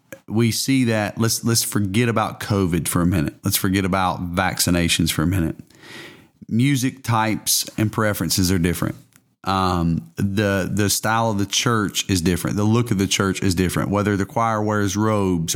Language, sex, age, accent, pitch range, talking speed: English, male, 30-49, American, 95-110 Hz, 175 wpm